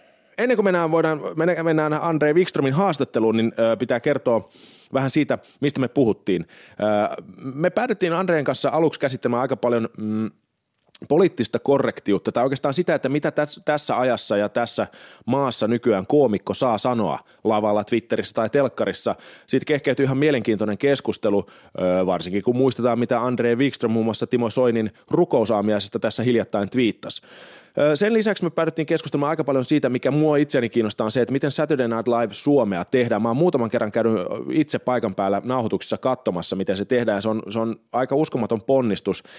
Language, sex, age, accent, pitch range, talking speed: Finnish, male, 30-49, native, 110-150 Hz, 160 wpm